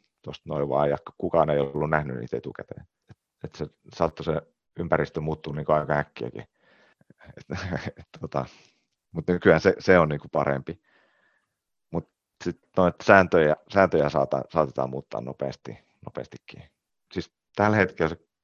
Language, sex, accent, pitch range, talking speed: Finnish, male, native, 70-80 Hz, 125 wpm